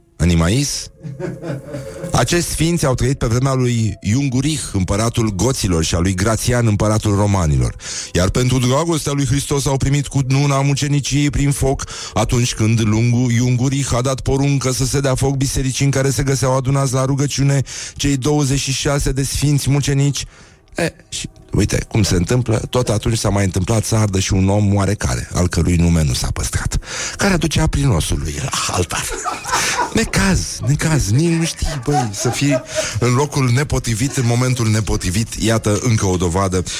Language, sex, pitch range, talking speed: Romanian, male, 105-140 Hz, 165 wpm